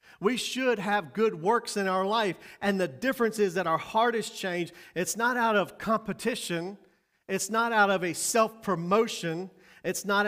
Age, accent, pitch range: 40-59, American, 160-210 Hz